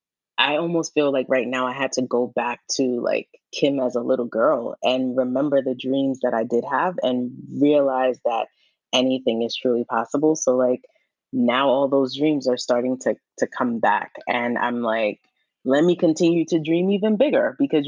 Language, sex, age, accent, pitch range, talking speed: English, female, 20-39, American, 125-150 Hz, 190 wpm